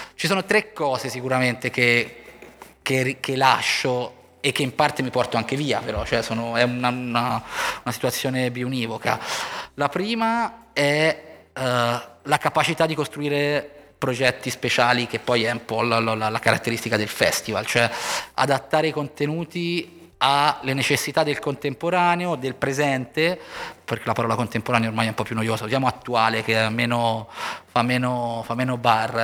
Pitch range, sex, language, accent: 120-150 Hz, male, Italian, native